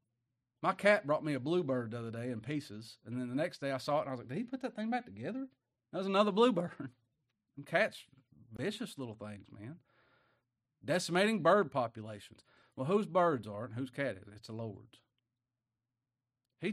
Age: 40-59